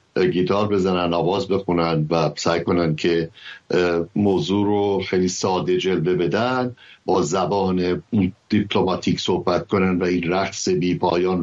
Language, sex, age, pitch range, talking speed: English, male, 60-79, 90-120 Hz, 125 wpm